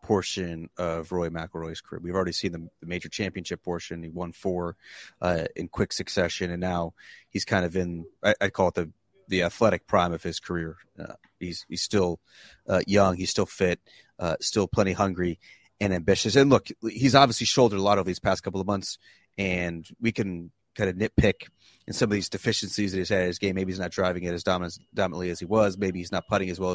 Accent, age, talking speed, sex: American, 30-49, 220 wpm, male